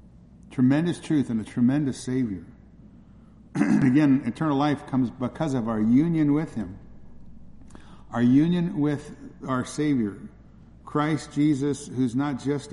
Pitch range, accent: 110-135 Hz, American